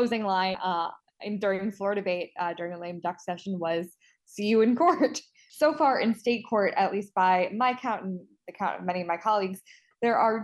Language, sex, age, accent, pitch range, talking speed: English, female, 20-39, American, 185-230 Hz, 220 wpm